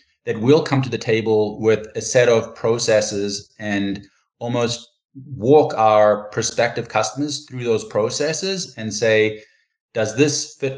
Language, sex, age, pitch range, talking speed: English, male, 20-39, 110-130 Hz, 140 wpm